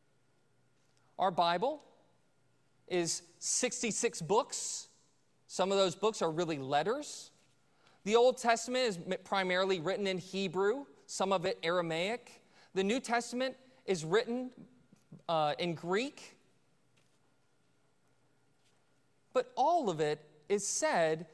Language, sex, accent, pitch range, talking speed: English, male, American, 185-250 Hz, 105 wpm